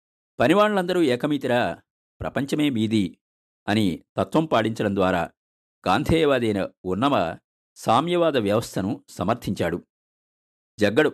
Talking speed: 75 wpm